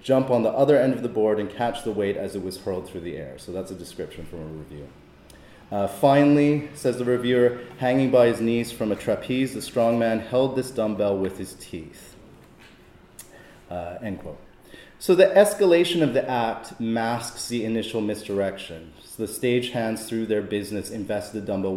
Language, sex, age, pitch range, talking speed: English, male, 30-49, 95-120 Hz, 185 wpm